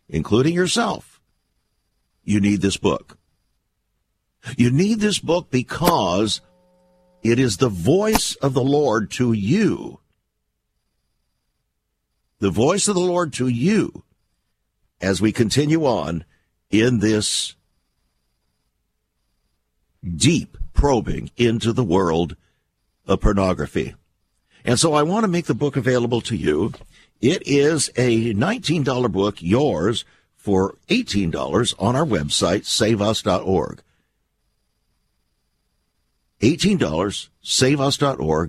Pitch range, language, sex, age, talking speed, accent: 85-125 Hz, English, male, 60-79, 100 wpm, American